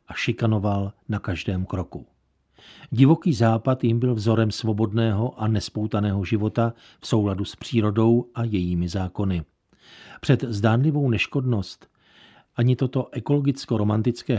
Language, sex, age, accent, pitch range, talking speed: Czech, male, 50-69, native, 100-125 Hz, 110 wpm